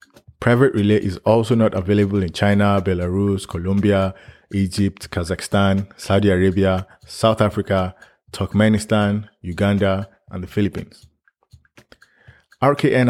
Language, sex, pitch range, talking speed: English, male, 95-110 Hz, 100 wpm